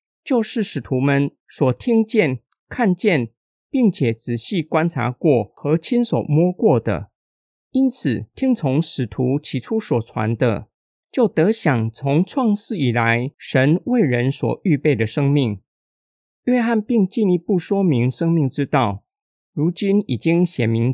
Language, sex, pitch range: Chinese, male, 125-205 Hz